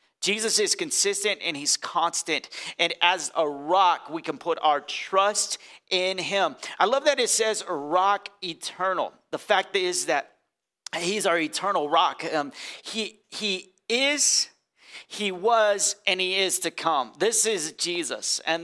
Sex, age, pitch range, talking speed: male, 40-59, 145-215 Hz, 155 wpm